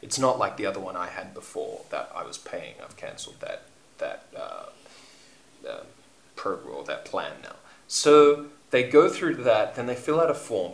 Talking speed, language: 195 wpm, English